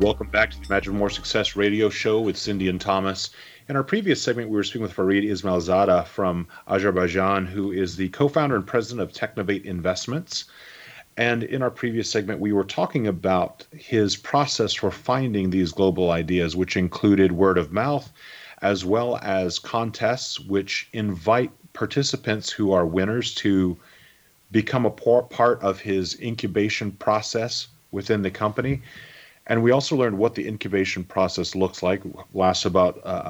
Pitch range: 90-115 Hz